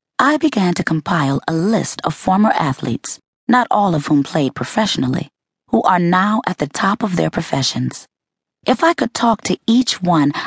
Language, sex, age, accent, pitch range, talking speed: English, female, 40-59, American, 145-220 Hz, 180 wpm